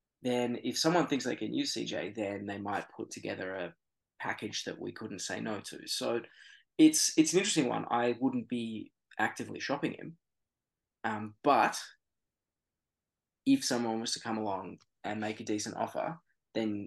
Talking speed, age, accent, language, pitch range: 165 wpm, 20-39, Australian, English, 105-125 Hz